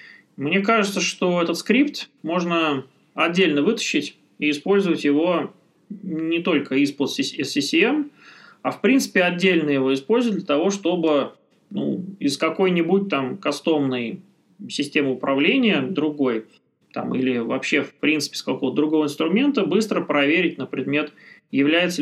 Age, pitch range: 20-39, 150-205 Hz